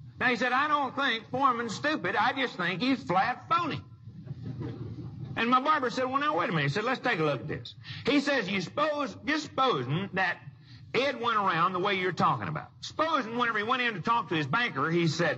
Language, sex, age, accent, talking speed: English, male, 50-69, American, 220 wpm